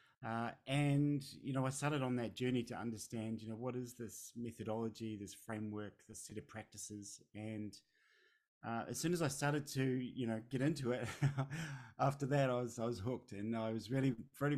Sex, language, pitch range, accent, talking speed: male, English, 110-130 Hz, Australian, 200 wpm